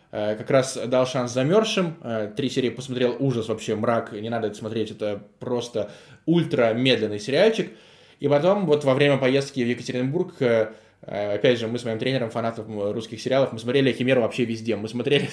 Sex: male